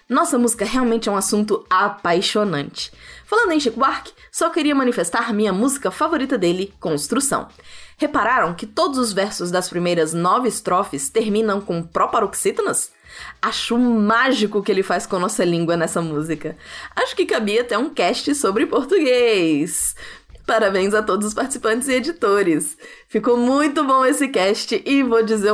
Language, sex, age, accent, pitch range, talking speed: Portuguese, female, 20-39, Brazilian, 190-275 Hz, 155 wpm